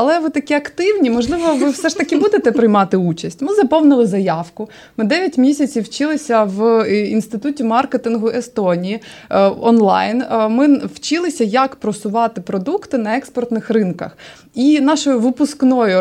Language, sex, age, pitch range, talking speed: Ukrainian, female, 20-39, 200-265 Hz, 130 wpm